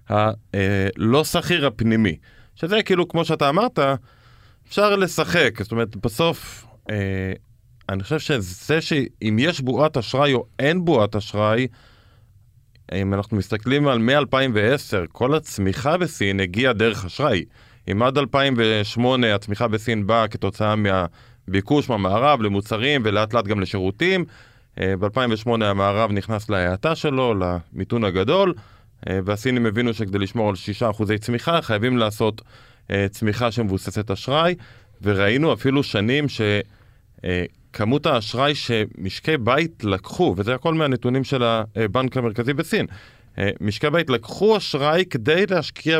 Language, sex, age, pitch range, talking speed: Hebrew, male, 20-39, 105-140 Hz, 125 wpm